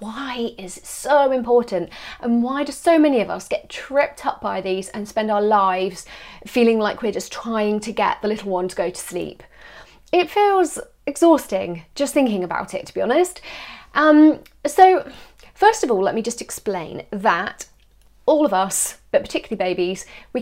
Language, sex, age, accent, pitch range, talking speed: English, female, 30-49, British, 195-290 Hz, 180 wpm